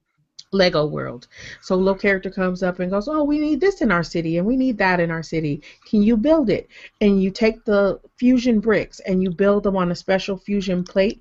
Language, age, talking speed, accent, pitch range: English, 30-49, 230 wpm, American, 180-220 Hz